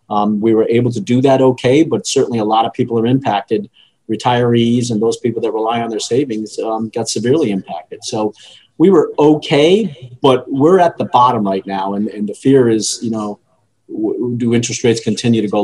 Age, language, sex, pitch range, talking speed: 40-59, English, male, 110-130 Hz, 205 wpm